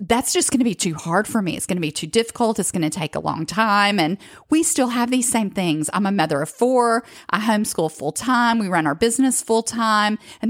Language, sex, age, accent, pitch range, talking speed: English, female, 40-59, American, 190-245 Hz, 255 wpm